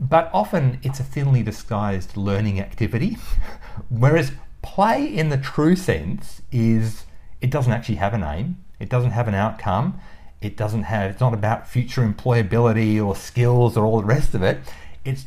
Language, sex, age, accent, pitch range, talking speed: English, male, 40-59, Australian, 85-120 Hz, 170 wpm